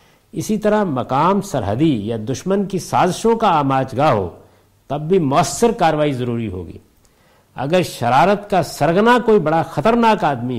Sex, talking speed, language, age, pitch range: male, 145 wpm, Urdu, 60-79, 115-180 Hz